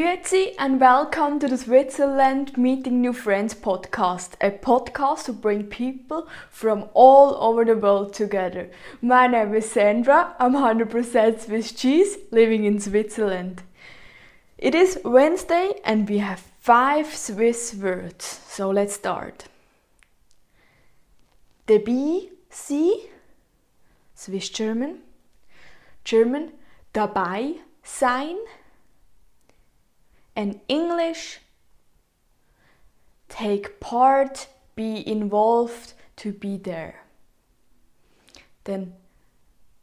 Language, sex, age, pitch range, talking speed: English, female, 20-39, 205-280 Hz, 90 wpm